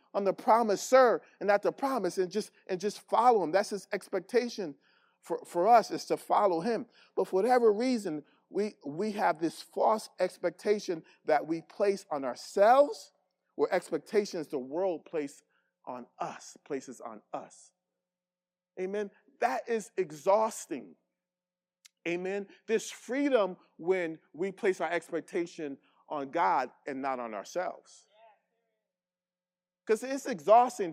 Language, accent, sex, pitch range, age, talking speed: English, American, male, 175-215 Hz, 40-59, 135 wpm